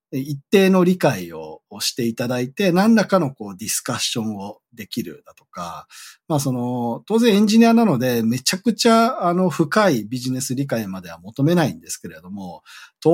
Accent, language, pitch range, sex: native, Japanese, 115-180 Hz, male